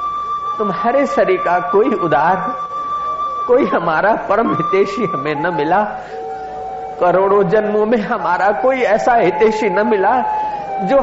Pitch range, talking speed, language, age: 210-300 Hz, 120 wpm, Hindi, 50-69